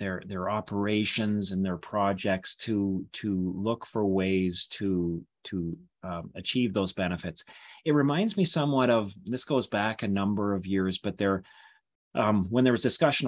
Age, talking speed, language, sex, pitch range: 30-49, 165 wpm, English, male, 95-125 Hz